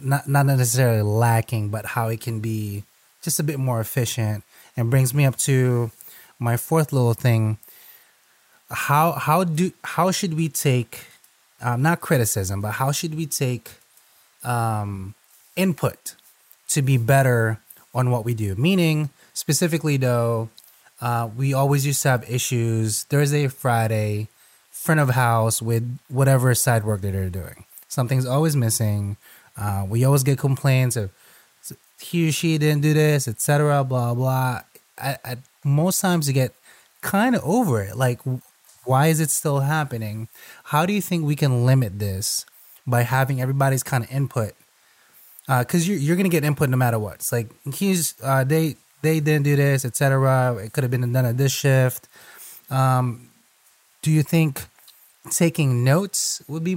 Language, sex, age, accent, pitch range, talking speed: English, male, 20-39, American, 115-150 Hz, 165 wpm